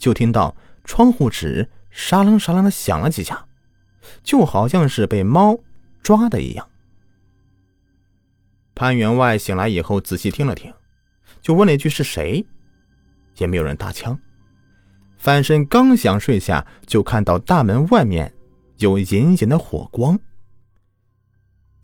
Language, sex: Chinese, male